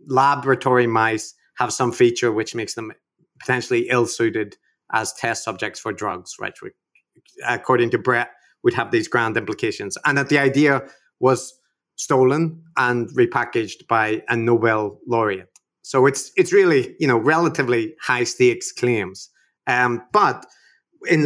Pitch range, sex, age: 120-155 Hz, male, 30-49